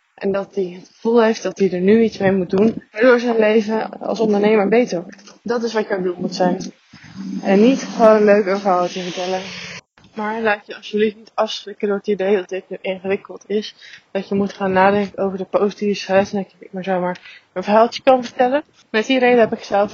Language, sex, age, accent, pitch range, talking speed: Dutch, female, 20-39, Dutch, 195-235 Hz, 220 wpm